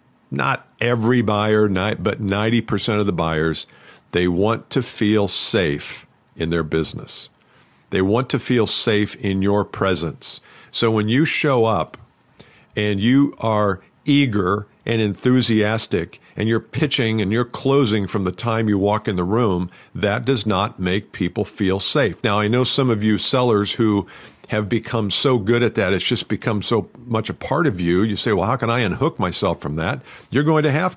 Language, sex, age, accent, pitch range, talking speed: English, male, 50-69, American, 100-130 Hz, 180 wpm